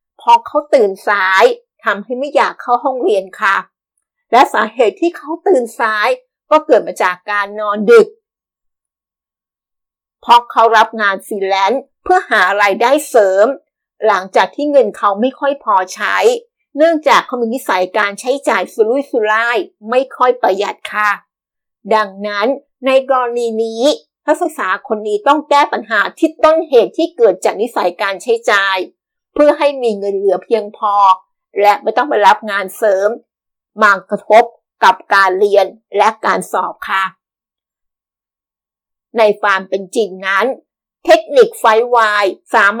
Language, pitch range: Thai, 205-285 Hz